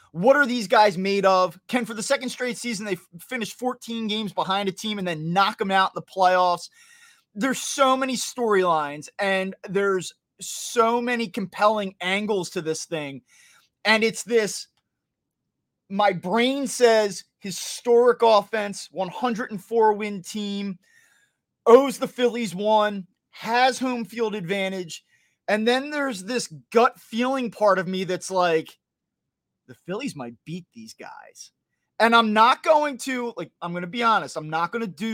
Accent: American